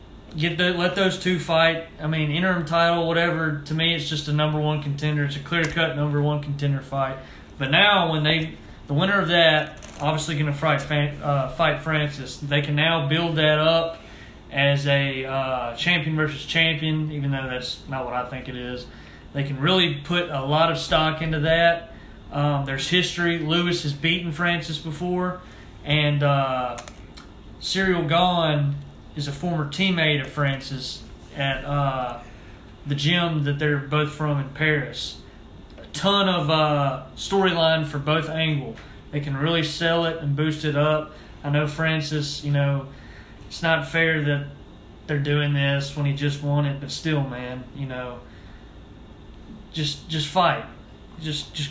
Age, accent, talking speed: 30-49, American, 165 wpm